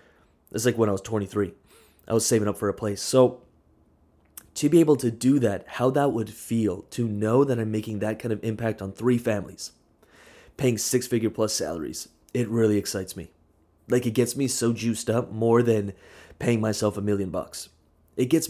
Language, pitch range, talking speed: English, 100-125 Hz, 200 wpm